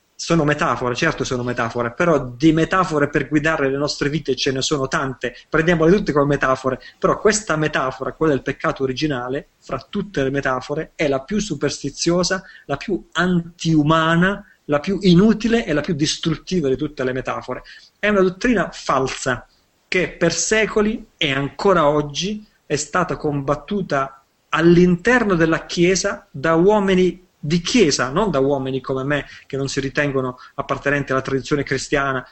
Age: 30-49